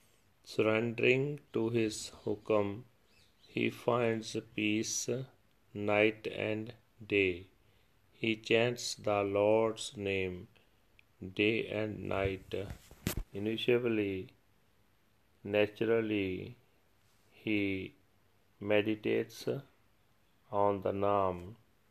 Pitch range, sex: 100-115 Hz, male